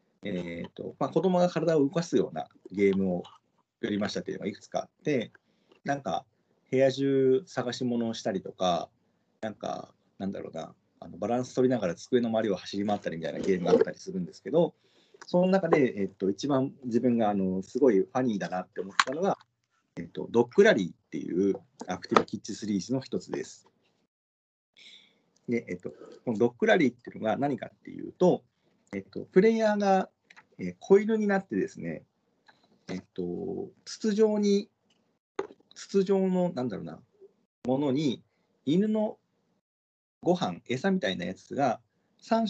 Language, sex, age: Japanese, male, 40-59